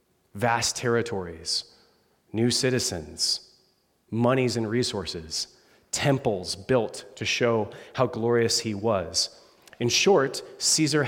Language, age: English, 30-49